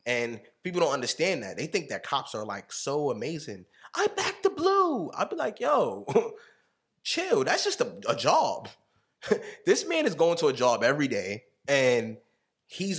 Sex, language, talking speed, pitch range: male, English, 175 wpm, 125-175 Hz